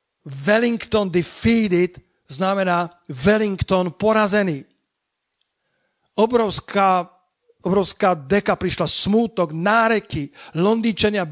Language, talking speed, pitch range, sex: Slovak, 65 wpm, 170-205 Hz, male